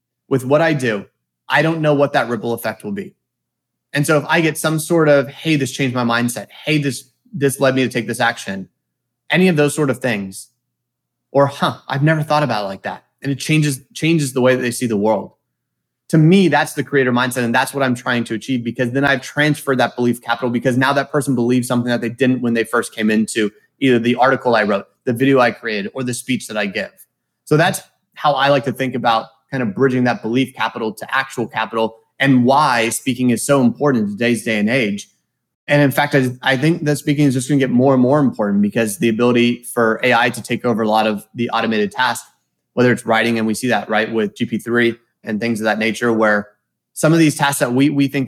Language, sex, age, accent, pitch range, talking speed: English, male, 30-49, American, 115-140 Hz, 240 wpm